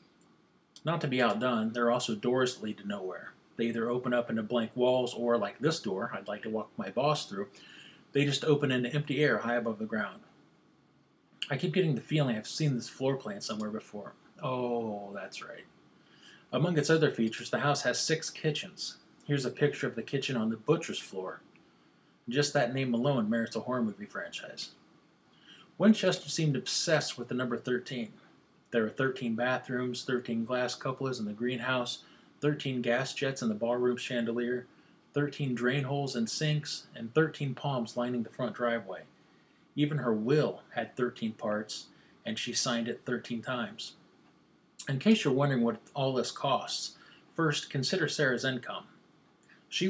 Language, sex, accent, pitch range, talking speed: English, male, American, 120-145 Hz, 175 wpm